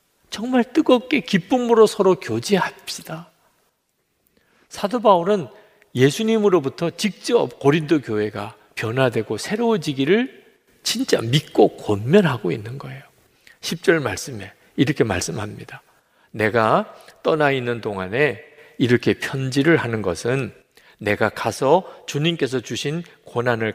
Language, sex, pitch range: Korean, male, 110-180 Hz